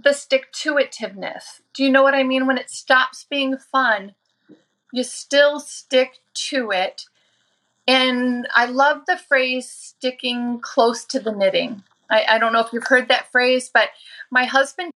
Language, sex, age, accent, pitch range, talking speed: English, female, 30-49, American, 225-270 Hz, 160 wpm